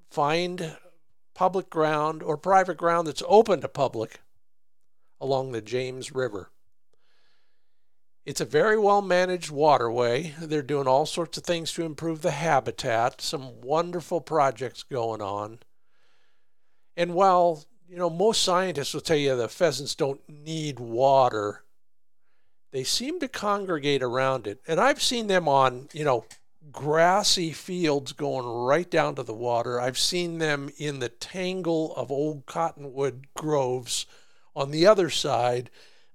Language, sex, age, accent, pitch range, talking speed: English, male, 50-69, American, 135-175 Hz, 140 wpm